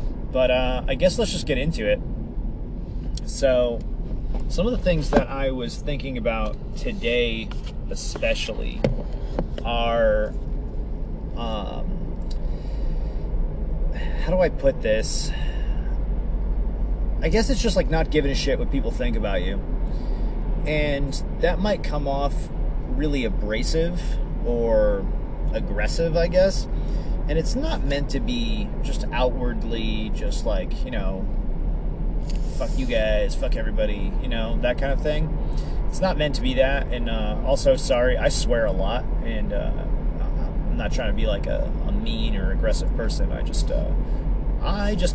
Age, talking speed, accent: 30-49, 145 wpm, American